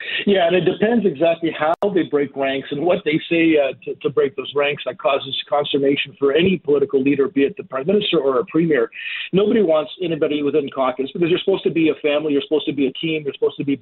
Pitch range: 140-180 Hz